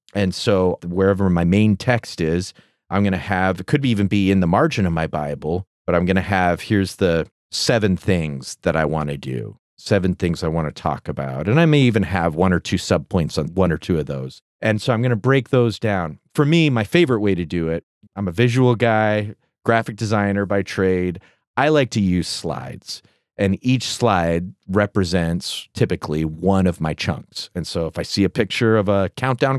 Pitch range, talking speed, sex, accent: 85-120 Hz, 215 wpm, male, American